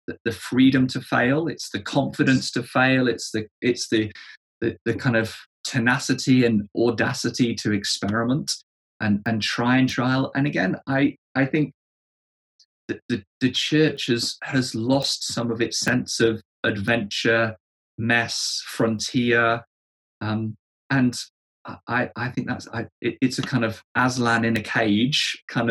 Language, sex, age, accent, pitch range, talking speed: English, male, 20-39, British, 110-125 Hz, 150 wpm